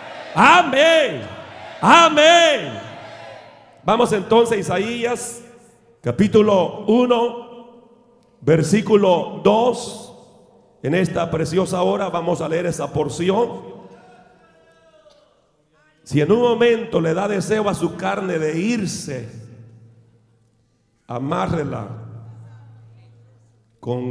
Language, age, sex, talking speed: Spanish, 40-59, male, 80 wpm